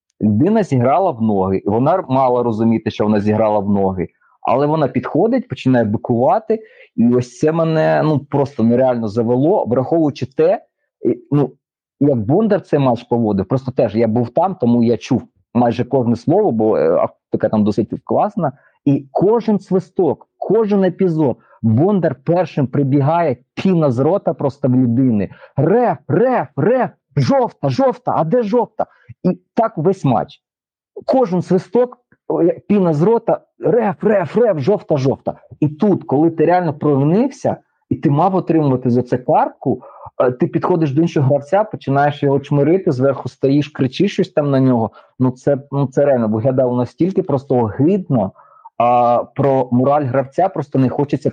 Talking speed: 150 wpm